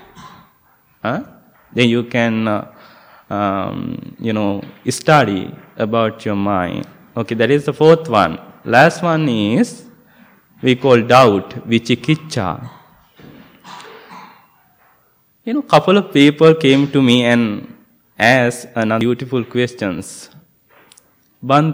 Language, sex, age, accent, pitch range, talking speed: English, male, 20-39, Indian, 120-175 Hz, 110 wpm